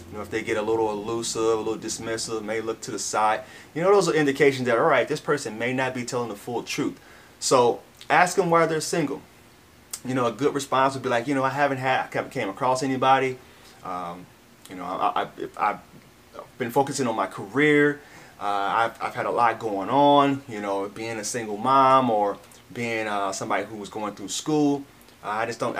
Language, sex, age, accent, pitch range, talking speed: English, male, 30-49, American, 110-140 Hz, 215 wpm